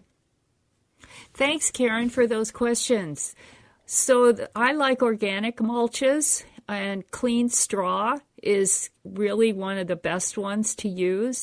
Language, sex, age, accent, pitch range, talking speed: English, female, 50-69, American, 170-230 Hz, 115 wpm